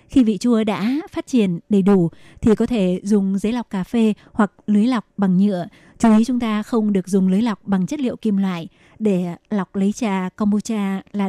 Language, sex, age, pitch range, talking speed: Vietnamese, female, 20-39, 195-225 Hz, 220 wpm